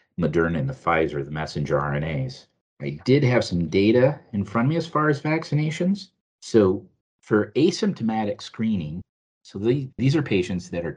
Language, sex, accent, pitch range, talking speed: English, male, American, 85-125 Hz, 165 wpm